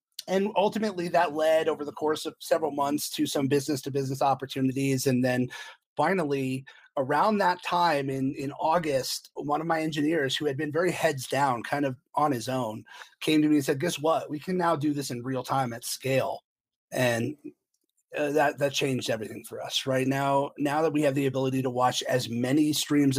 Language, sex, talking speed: English, male, 200 wpm